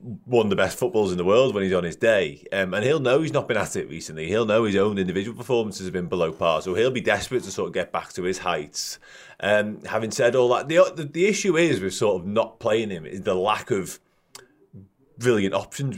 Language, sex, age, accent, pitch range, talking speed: English, male, 30-49, British, 95-125 Hz, 250 wpm